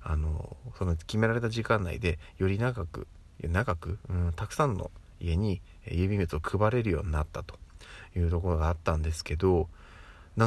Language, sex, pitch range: Japanese, male, 85-110 Hz